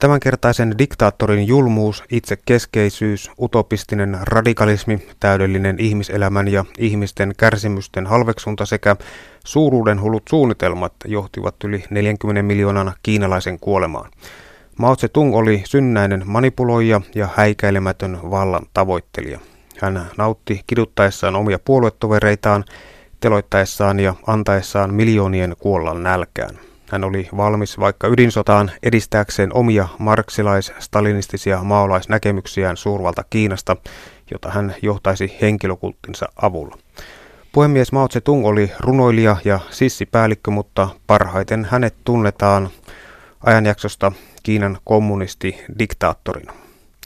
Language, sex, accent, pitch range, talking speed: Finnish, male, native, 100-115 Hz, 95 wpm